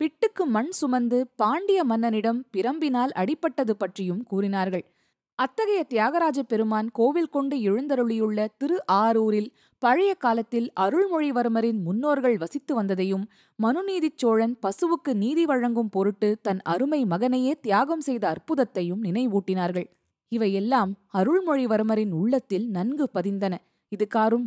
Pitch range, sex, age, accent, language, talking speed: 205-270 Hz, female, 20-39, native, Tamil, 110 wpm